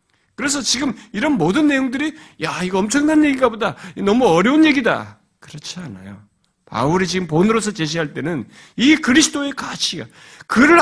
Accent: native